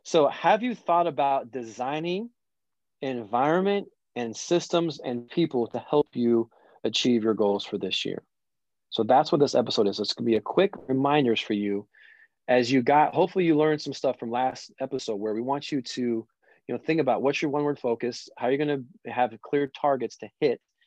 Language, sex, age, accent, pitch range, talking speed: English, male, 30-49, American, 120-150 Hz, 200 wpm